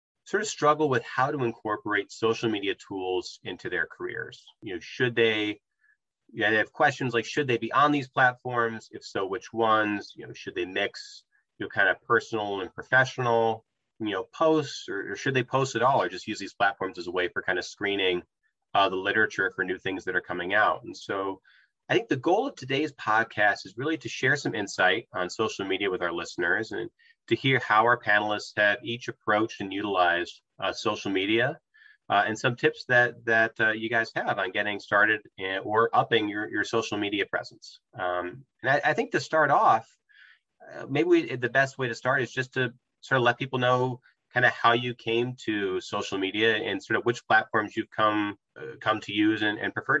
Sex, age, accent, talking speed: male, 30-49, American, 215 wpm